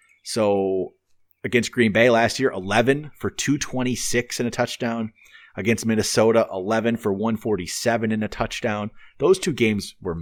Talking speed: 140 wpm